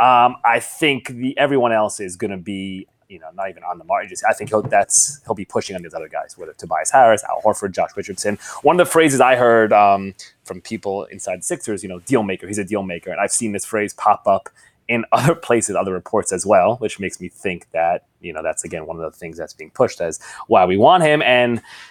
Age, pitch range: 30-49, 100-125 Hz